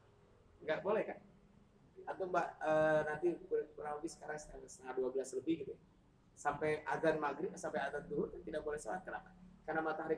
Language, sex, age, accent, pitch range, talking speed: Indonesian, male, 30-49, native, 130-185 Hz, 155 wpm